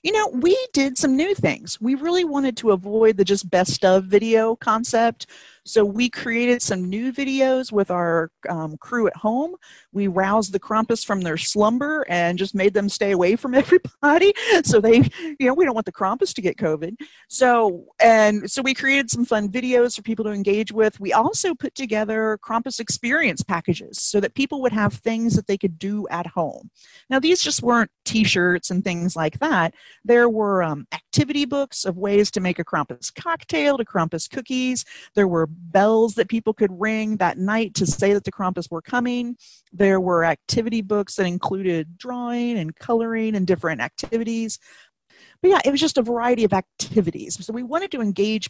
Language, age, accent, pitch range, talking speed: English, 40-59, American, 190-245 Hz, 190 wpm